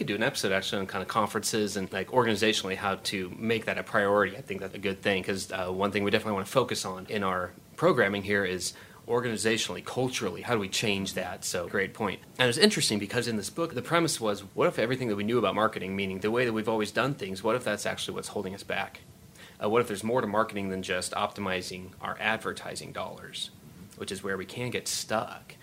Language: English